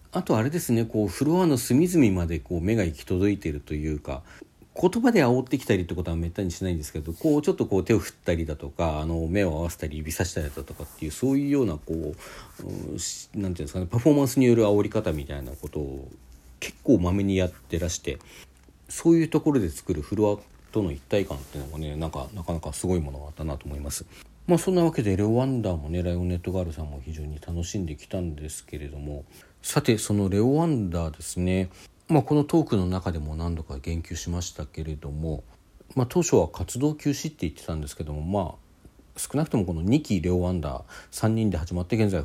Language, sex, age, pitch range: Japanese, male, 50-69, 80-110 Hz